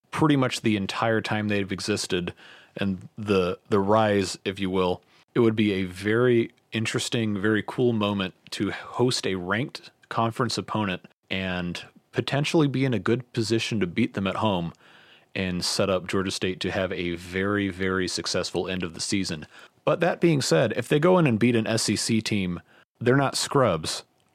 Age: 30-49